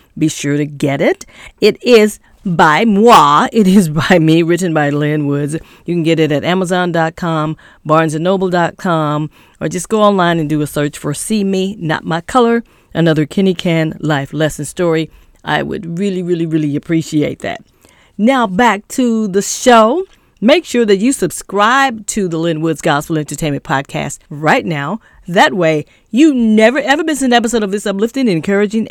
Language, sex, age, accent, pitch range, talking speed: English, female, 40-59, American, 160-220 Hz, 170 wpm